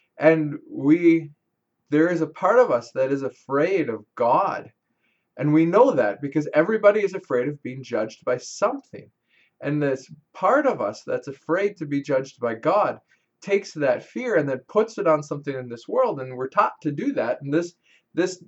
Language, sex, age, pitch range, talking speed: English, male, 20-39, 140-180 Hz, 190 wpm